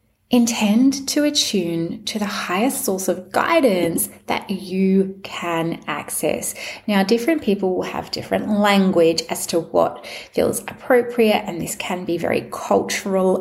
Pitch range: 160-210 Hz